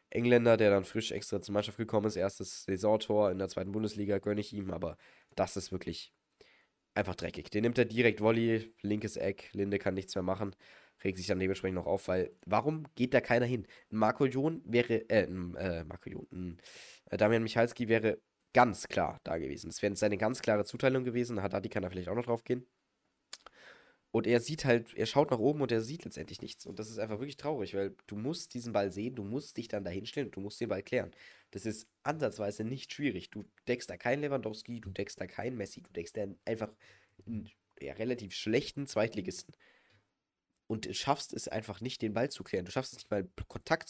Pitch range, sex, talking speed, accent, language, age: 100-120 Hz, male, 210 wpm, German, German, 20-39